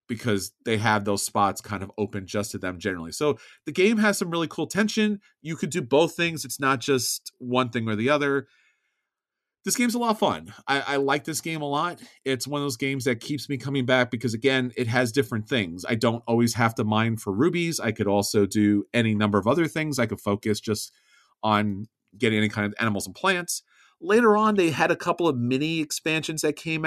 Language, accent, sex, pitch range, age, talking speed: English, American, male, 110-150 Hz, 40-59, 230 wpm